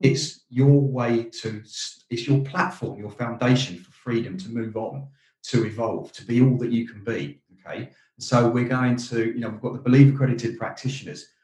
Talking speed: 190 wpm